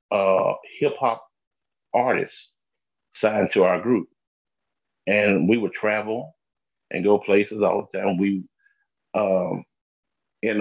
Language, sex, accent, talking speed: English, male, American, 115 wpm